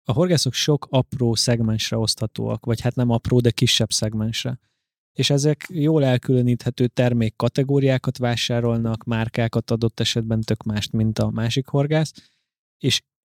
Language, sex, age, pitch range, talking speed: Hungarian, male, 20-39, 115-130 Hz, 135 wpm